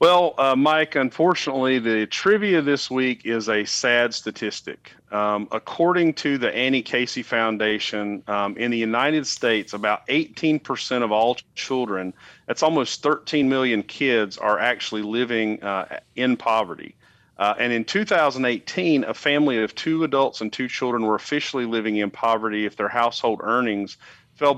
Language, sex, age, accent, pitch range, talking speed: English, male, 40-59, American, 105-135 Hz, 150 wpm